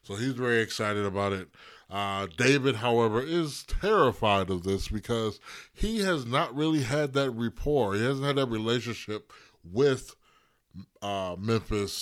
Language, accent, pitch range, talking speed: English, American, 95-135 Hz, 145 wpm